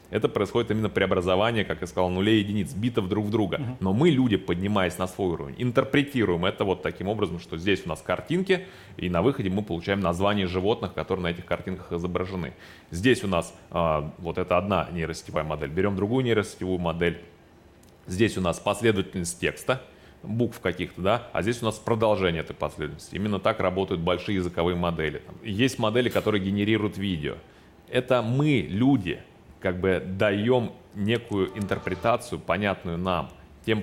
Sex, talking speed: male, 165 wpm